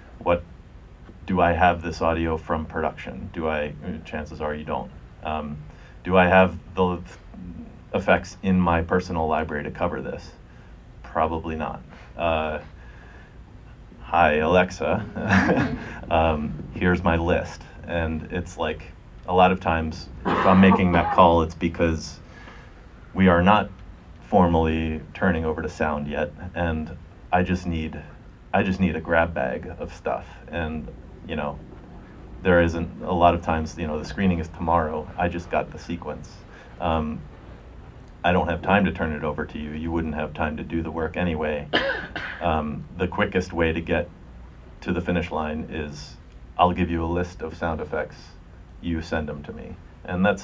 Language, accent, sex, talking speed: English, American, male, 165 wpm